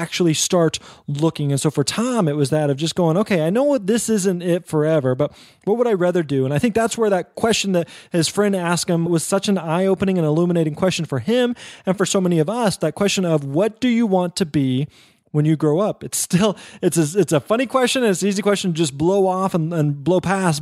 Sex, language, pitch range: male, English, 155-205 Hz